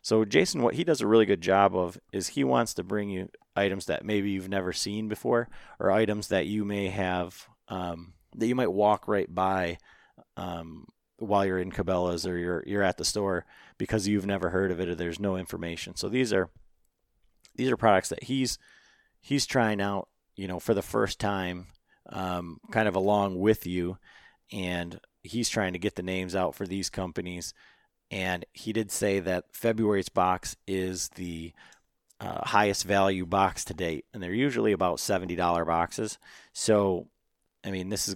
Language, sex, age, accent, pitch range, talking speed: English, male, 30-49, American, 90-105 Hz, 185 wpm